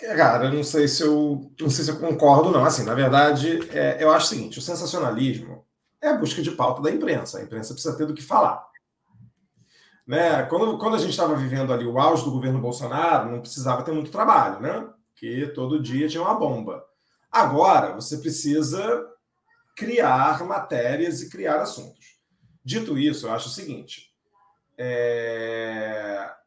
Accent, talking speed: Brazilian, 175 wpm